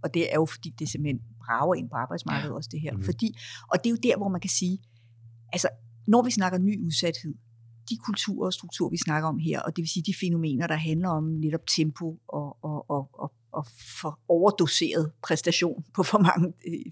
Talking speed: 215 wpm